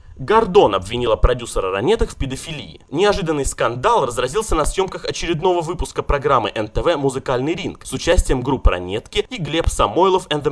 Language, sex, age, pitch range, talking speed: Russian, male, 20-39, 140-230 Hz, 150 wpm